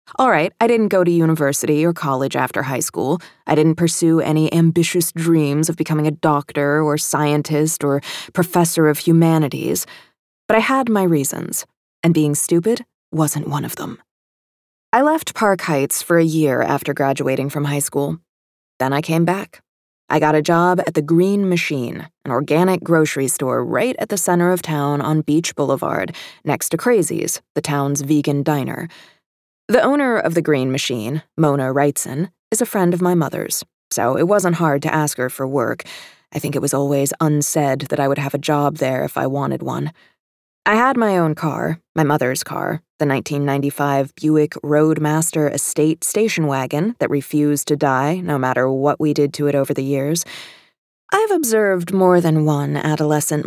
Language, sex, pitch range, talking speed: English, female, 145-170 Hz, 180 wpm